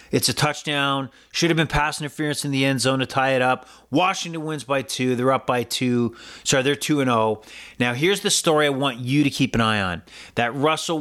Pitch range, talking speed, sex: 125-155 Hz, 235 wpm, male